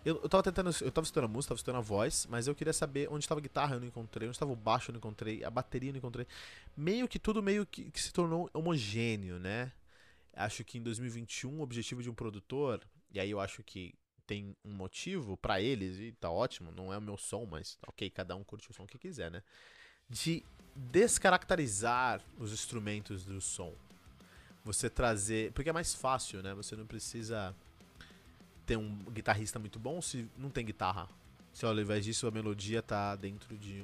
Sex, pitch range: male, 100-125 Hz